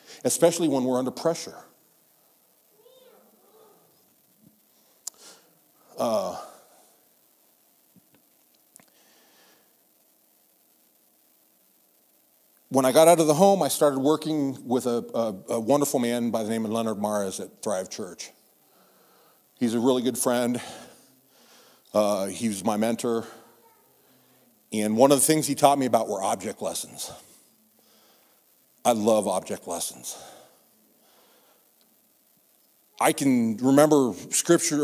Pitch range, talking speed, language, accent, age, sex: 120-160 Hz, 105 wpm, English, American, 50-69, male